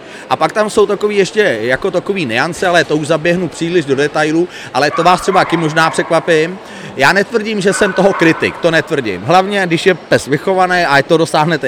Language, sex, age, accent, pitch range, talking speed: Czech, male, 30-49, native, 160-195 Hz, 205 wpm